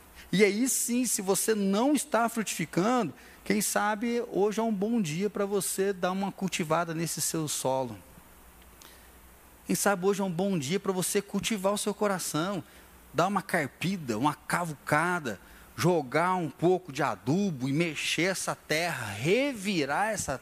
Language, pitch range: Portuguese, 155-200 Hz